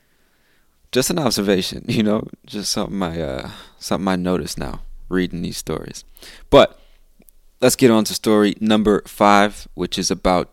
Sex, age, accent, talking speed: male, 20-39, American, 140 wpm